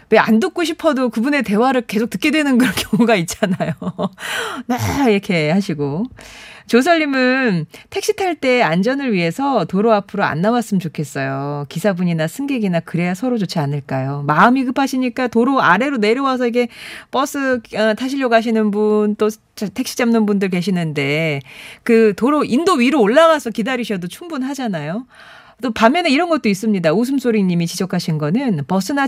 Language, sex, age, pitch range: Korean, female, 40-59, 170-250 Hz